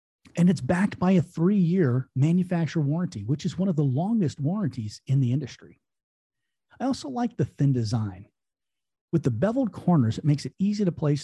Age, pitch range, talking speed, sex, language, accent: 40-59, 125-180 Hz, 180 wpm, male, English, American